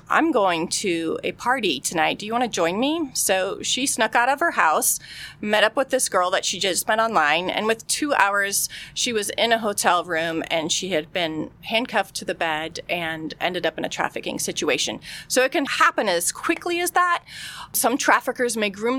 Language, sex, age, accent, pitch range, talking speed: English, female, 30-49, American, 185-235 Hz, 210 wpm